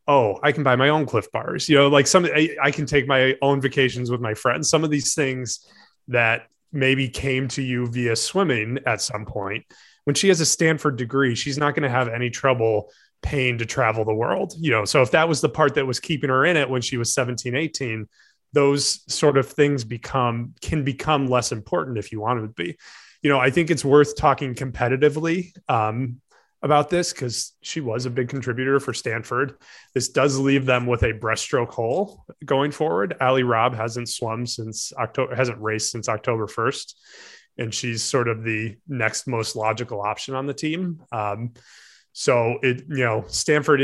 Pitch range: 115-140 Hz